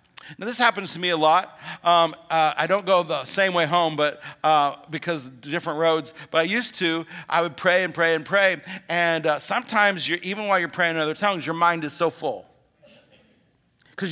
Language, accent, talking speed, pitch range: English, American, 215 wpm, 160-195 Hz